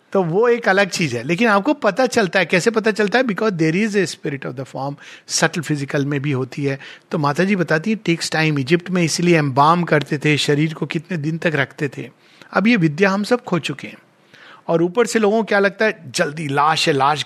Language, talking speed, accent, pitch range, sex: Hindi, 240 wpm, native, 150-210 Hz, male